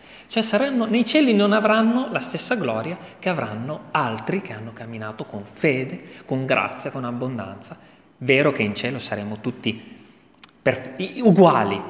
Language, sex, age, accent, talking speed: Italian, male, 30-49, native, 140 wpm